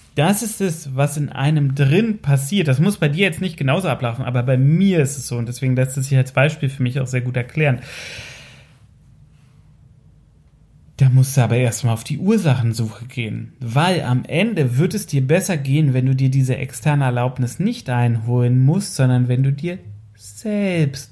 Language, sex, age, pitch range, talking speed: German, male, 30-49, 125-160 Hz, 190 wpm